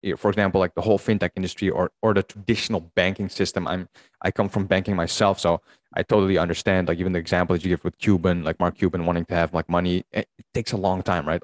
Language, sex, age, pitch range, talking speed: English, male, 20-39, 90-105 Hz, 240 wpm